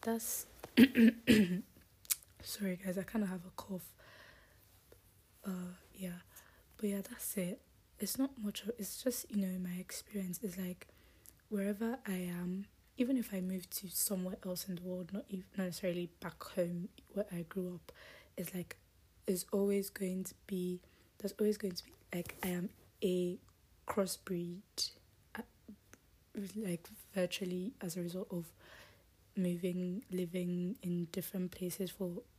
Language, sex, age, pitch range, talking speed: English, female, 20-39, 175-200 Hz, 145 wpm